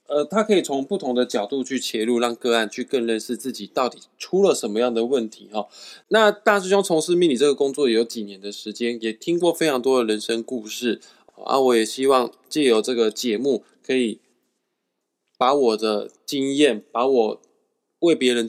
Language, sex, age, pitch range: Chinese, male, 20-39, 110-145 Hz